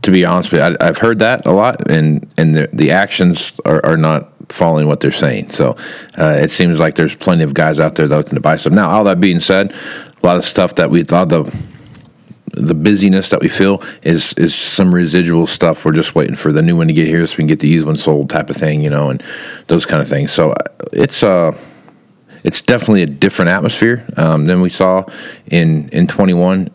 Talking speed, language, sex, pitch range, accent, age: 235 wpm, English, male, 75-90 Hz, American, 40-59